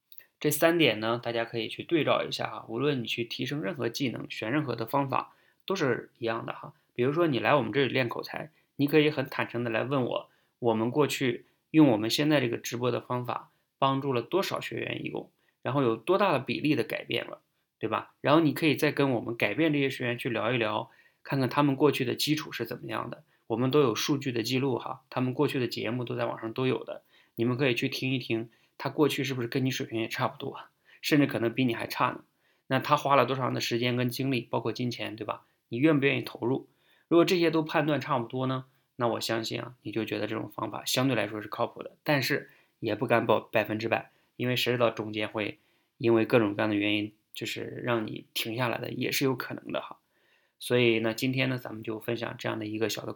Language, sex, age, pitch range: Chinese, male, 20-39, 115-140 Hz